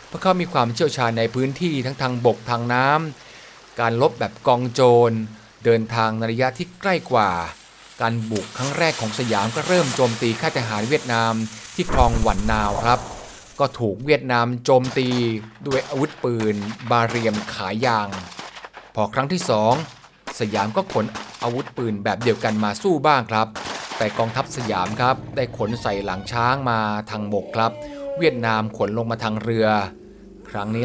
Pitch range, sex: 110-135 Hz, male